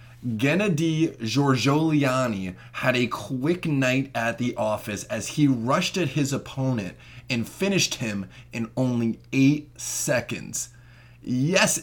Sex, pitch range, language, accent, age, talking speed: male, 115-145 Hz, English, American, 20-39, 115 wpm